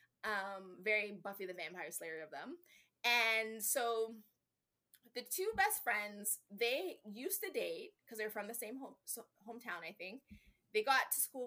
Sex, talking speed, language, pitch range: female, 155 wpm, English, 195-285 Hz